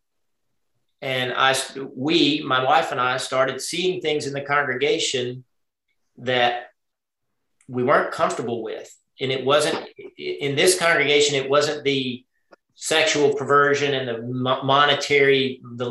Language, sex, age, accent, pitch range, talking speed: English, male, 40-59, American, 130-195 Hz, 125 wpm